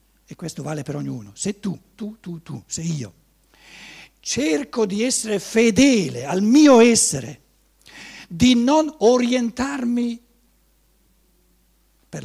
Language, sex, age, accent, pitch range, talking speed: Italian, male, 60-79, native, 165-250 Hz, 115 wpm